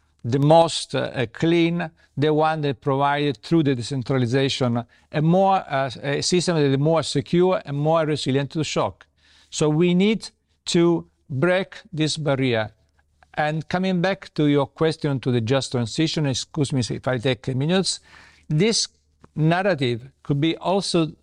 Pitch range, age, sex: 130-165 Hz, 50-69, male